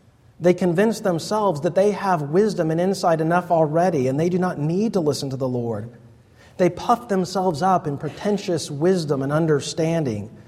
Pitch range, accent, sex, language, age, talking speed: 120-175 Hz, American, male, English, 30-49, 170 wpm